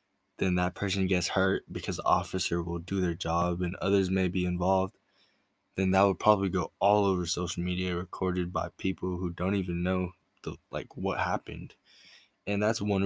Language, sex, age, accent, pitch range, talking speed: English, male, 10-29, American, 90-100 Hz, 185 wpm